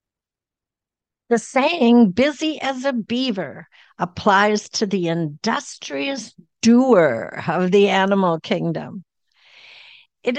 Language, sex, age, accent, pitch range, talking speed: English, female, 60-79, American, 190-245 Hz, 90 wpm